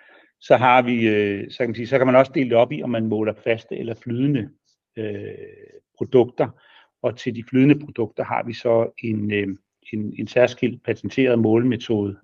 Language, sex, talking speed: Danish, male, 180 wpm